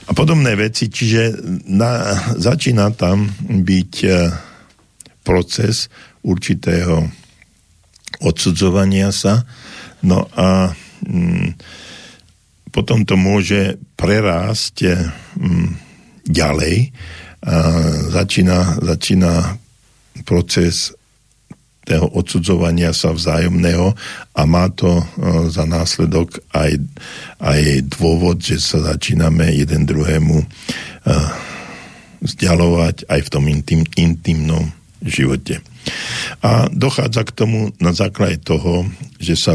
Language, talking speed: Czech, 90 wpm